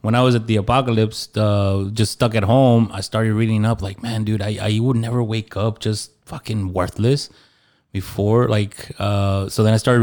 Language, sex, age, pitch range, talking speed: English, male, 20-39, 105-120 Hz, 205 wpm